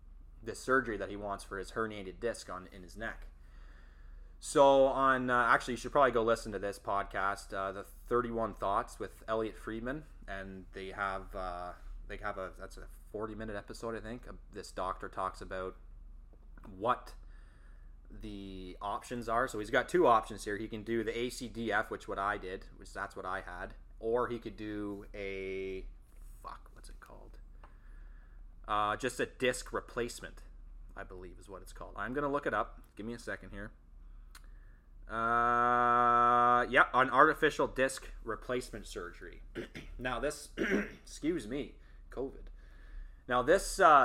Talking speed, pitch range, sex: 160 wpm, 70-115 Hz, male